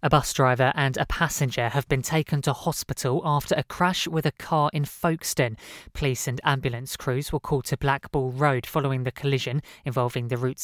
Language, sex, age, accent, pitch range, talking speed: English, female, 20-39, British, 130-155 Hz, 190 wpm